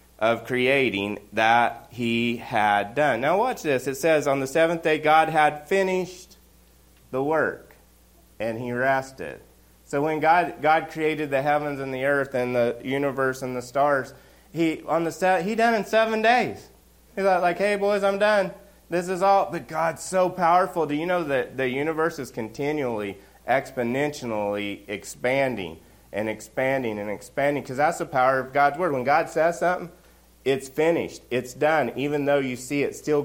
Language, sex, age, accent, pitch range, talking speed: English, male, 30-49, American, 130-185 Hz, 175 wpm